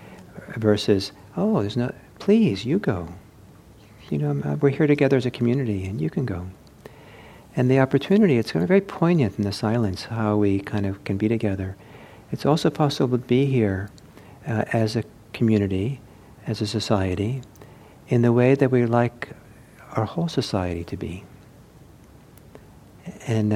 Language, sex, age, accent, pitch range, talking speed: English, male, 50-69, American, 100-120 Hz, 160 wpm